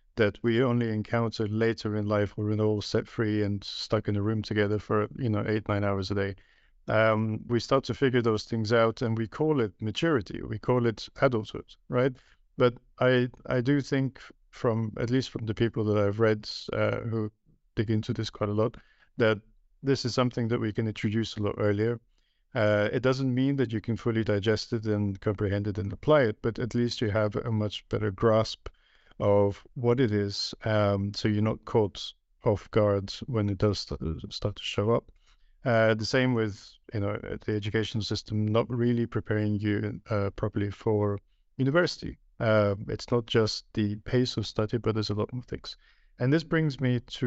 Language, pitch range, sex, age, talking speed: English, 105-120 Hz, male, 50-69, 195 wpm